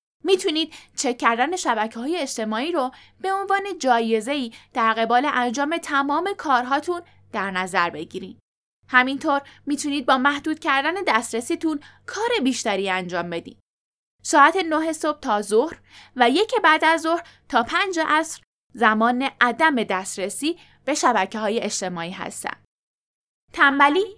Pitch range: 230-325 Hz